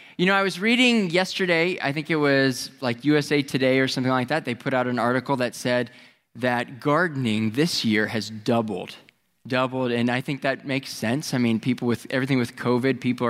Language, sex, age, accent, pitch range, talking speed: English, male, 20-39, American, 120-155 Hz, 205 wpm